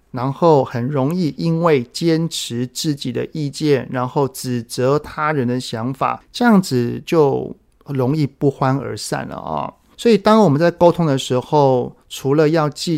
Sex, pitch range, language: male, 125-155 Hz, Chinese